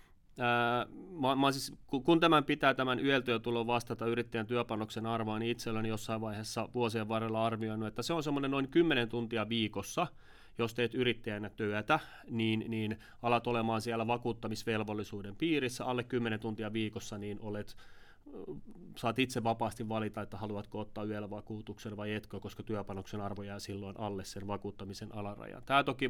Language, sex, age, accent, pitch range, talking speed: Finnish, male, 30-49, native, 110-125 Hz, 150 wpm